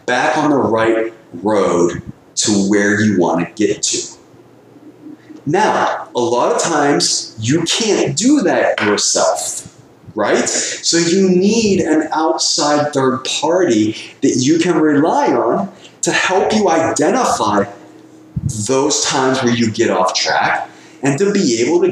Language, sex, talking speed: English, male, 140 wpm